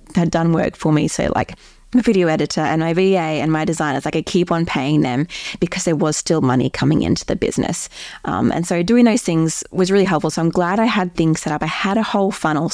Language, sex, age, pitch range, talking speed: English, female, 20-39, 155-185 Hz, 250 wpm